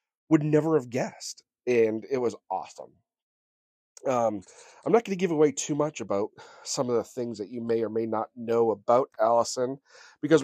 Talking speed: 190 wpm